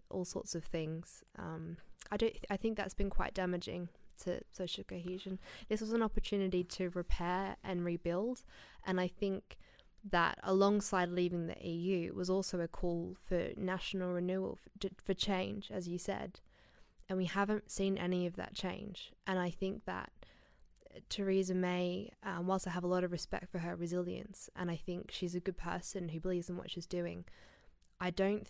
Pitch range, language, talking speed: 175-195 Hz, English, 185 wpm